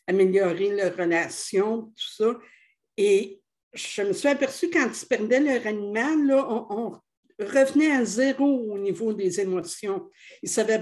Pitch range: 200-275 Hz